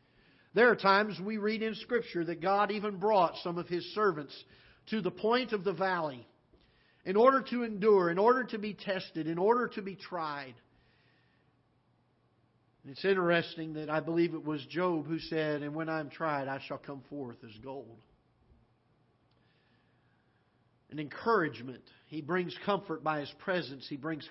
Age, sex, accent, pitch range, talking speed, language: 50-69, male, American, 140-180 Hz, 165 wpm, English